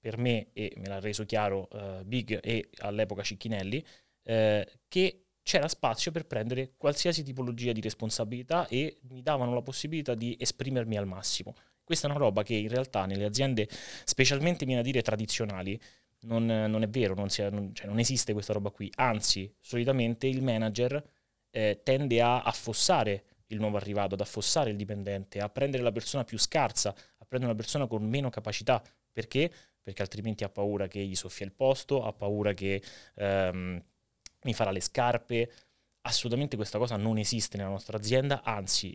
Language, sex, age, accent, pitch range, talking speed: Italian, male, 20-39, native, 100-125 Hz, 175 wpm